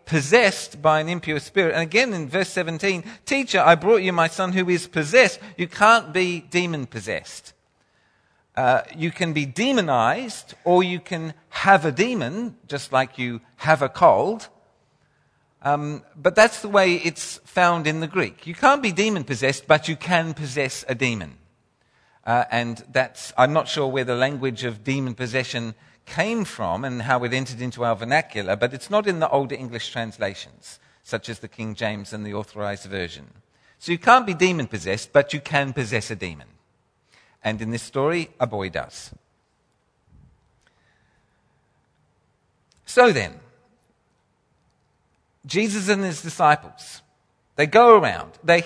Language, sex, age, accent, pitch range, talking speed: English, male, 50-69, British, 125-185 Hz, 155 wpm